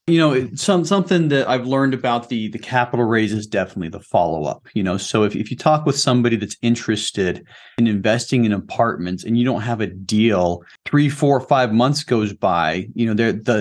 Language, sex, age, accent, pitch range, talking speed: English, male, 30-49, American, 105-120 Hz, 205 wpm